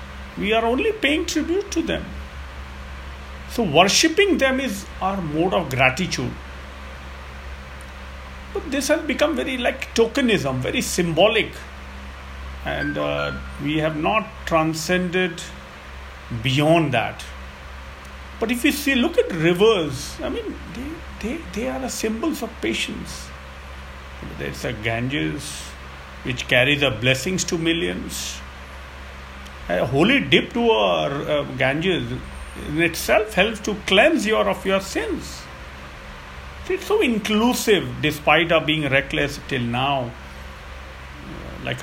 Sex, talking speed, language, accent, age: male, 120 wpm, English, Indian, 50-69